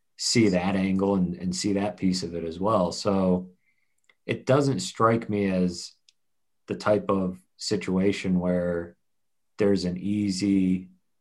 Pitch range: 95-110 Hz